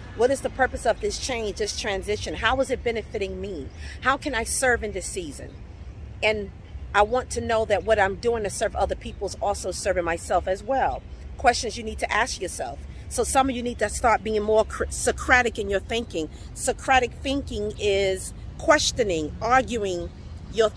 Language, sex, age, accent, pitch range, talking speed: English, female, 40-59, American, 205-260 Hz, 190 wpm